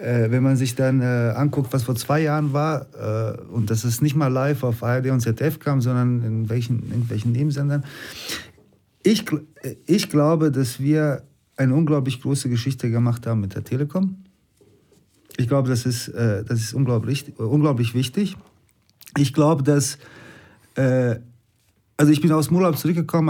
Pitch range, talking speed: 115-150 Hz, 150 wpm